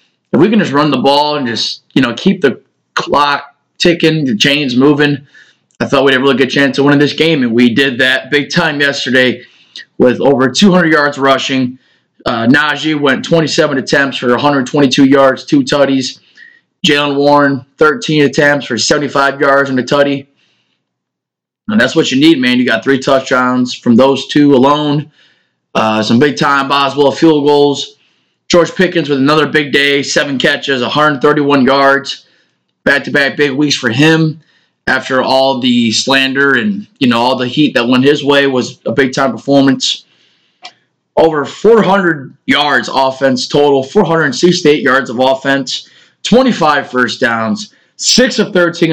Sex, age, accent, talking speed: male, 20-39, American, 160 wpm